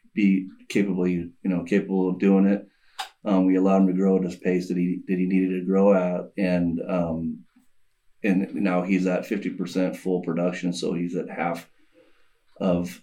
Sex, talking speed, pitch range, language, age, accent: male, 185 wpm, 90-100 Hz, English, 30-49, American